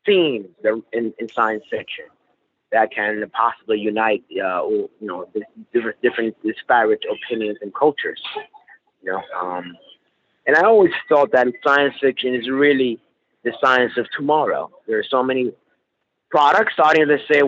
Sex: male